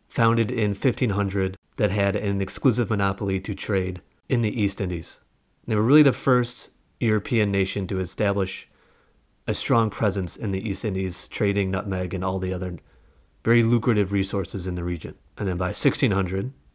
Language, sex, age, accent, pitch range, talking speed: English, male, 30-49, American, 95-115 Hz, 170 wpm